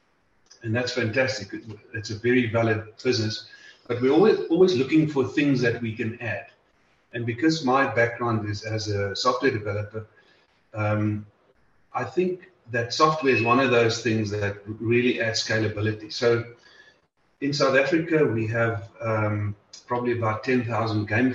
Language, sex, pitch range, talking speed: English, male, 110-125 Hz, 150 wpm